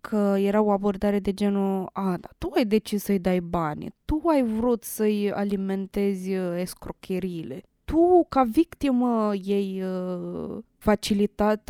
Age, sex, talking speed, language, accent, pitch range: 20-39, female, 135 wpm, Romanian, native, 185-215 Hz